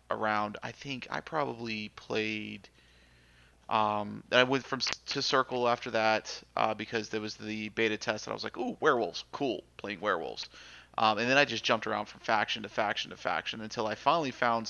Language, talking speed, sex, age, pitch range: English, 190 wpm, male, 30-49, 105-120 Hz